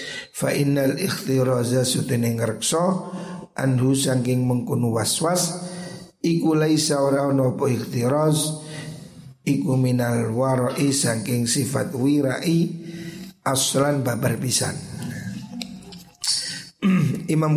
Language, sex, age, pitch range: Indonesian, male, 50-69, 130-160 Hz